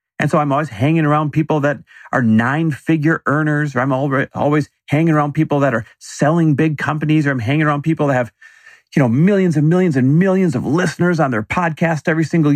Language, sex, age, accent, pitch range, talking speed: English, male, 40-59, American, 115-170 Hz, 205 wpm